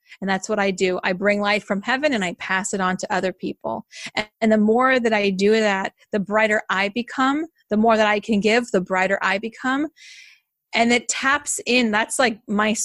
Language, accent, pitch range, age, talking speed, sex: English, American, 205-245 Hz, 30-49, 215 wpm, female